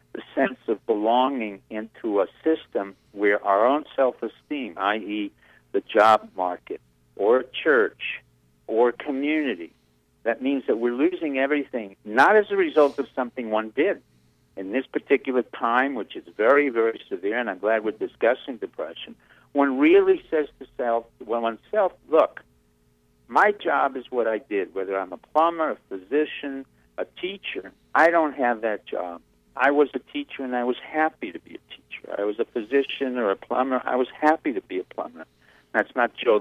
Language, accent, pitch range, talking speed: English, American, 95-150 Hz, 170 wpm